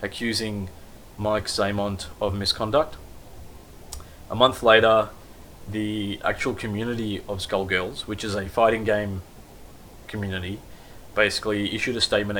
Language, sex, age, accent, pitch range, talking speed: English, male, 20-39, Australian, 100-115 Hz, 110 wpm